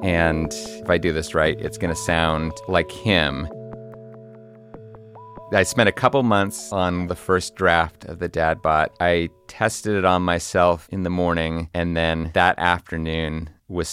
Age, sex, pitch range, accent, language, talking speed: 30-49, male, 85-105 Hz, American, English, 165 wpm